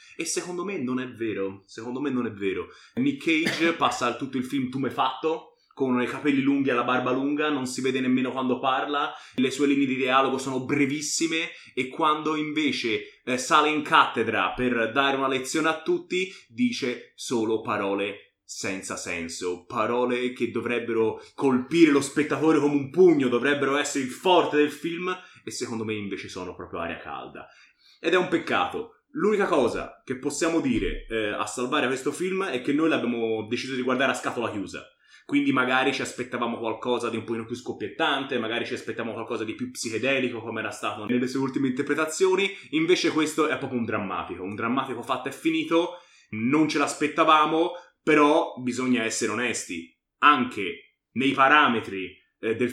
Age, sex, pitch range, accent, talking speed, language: 20-39, male, 120-160 Hz, native, 175 wpm, Italian